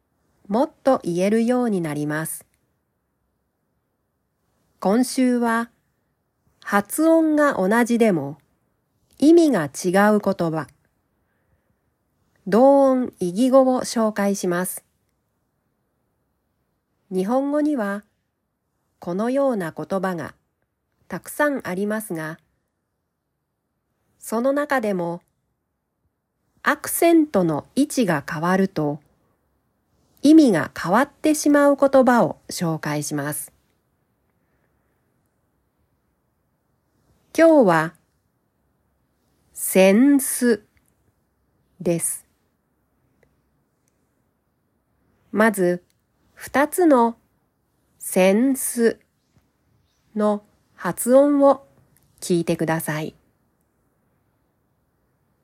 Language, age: Japanese, 40-59